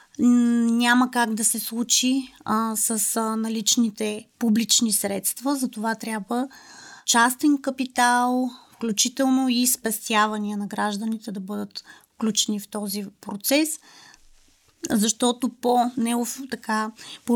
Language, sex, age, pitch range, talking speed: English, female, 30-49, 215-250 Hz, 110 wpm